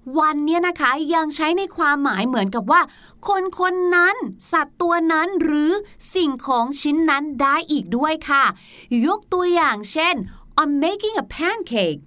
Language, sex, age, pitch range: Thai, female, 30-49, 240-335 Hz